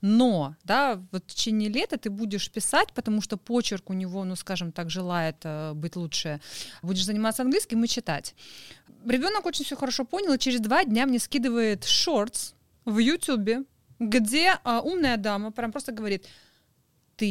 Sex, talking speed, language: female, 165 wpm, Russian